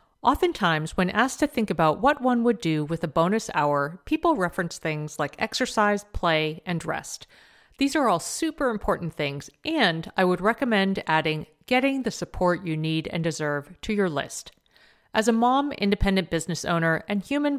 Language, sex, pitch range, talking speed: English, female, 160-235 Hz, 175 wpm